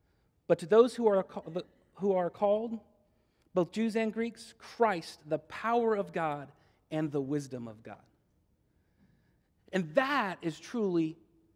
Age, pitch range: 40-59, 170-245 Hz